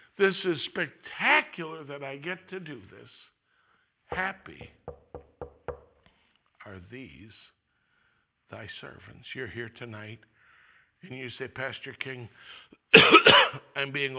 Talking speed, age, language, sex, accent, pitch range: 100 wpm, 60-79, English, male, American, 115-140 Hz